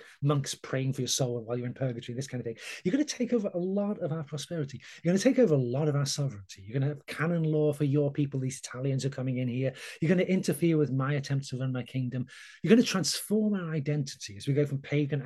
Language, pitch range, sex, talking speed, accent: English, 130-175 Hz, male, 275 wpm, British